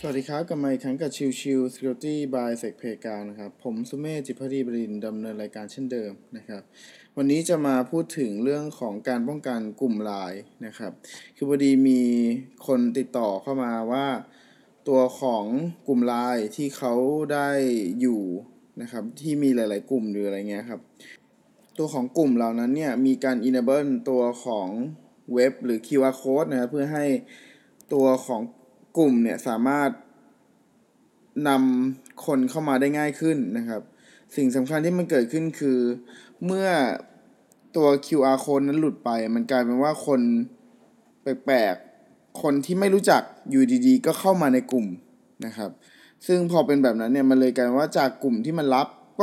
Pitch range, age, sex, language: 125-155 Hz, 20-39, male, Thai